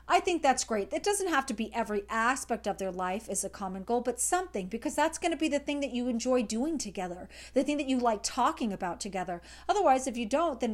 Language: English